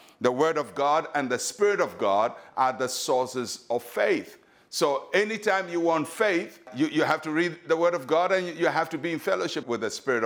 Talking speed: 220 wpm